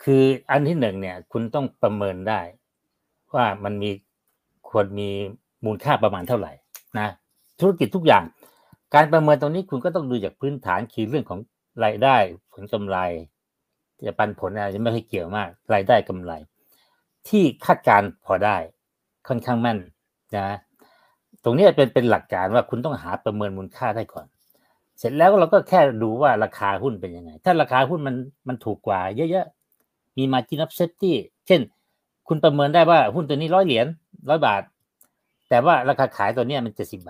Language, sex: Thai, male